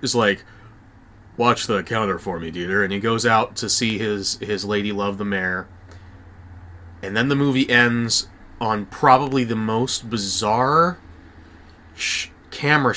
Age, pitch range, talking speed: 30-49, 100-150 Hz, 150 wpm